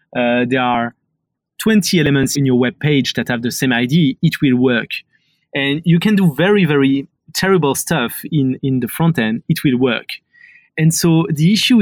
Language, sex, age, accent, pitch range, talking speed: English, male, 30-49, French, 135-170 Hz, 185 wpm